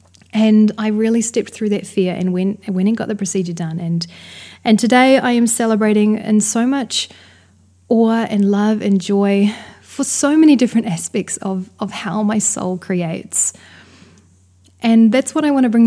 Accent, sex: Australian, female